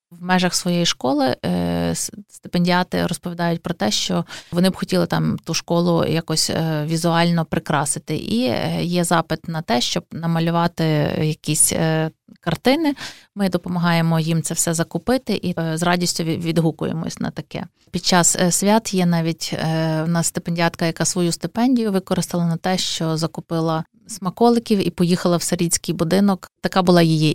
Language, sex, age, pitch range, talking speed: Ukrainian, female, 20-39, 165-190 Hz, 140 wpm